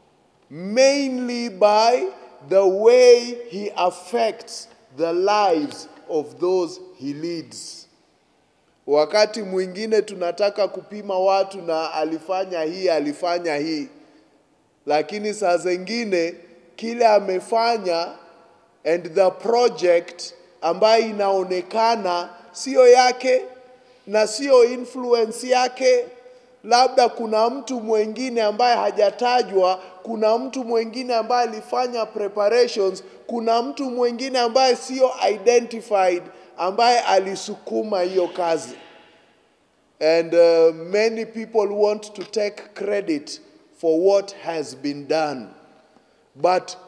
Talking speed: 95 wpm